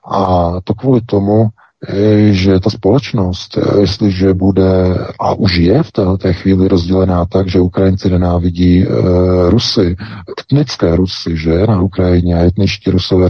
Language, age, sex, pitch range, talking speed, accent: Czech, 40-59, male, 85-100 Hz, 130 wpm, native